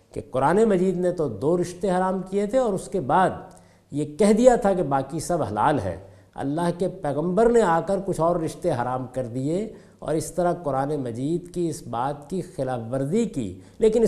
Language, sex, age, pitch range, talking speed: Urdu, male, 50-69, 110-180 Hz, 205 wpm